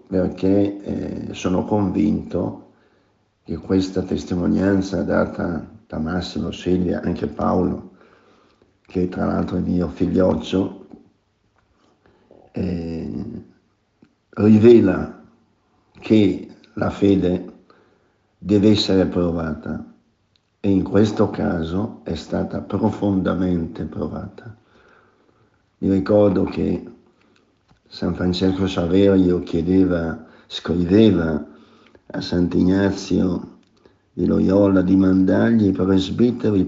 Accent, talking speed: native, 85 wpm